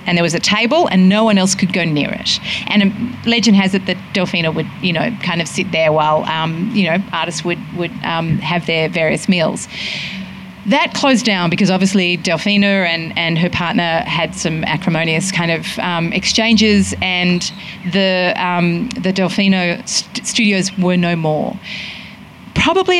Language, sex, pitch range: English, female, 175-220 Hz